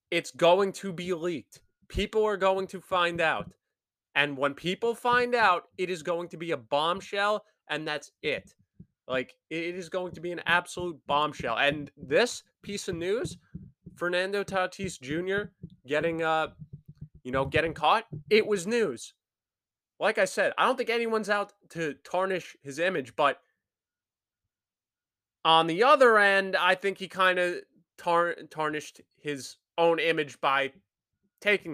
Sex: male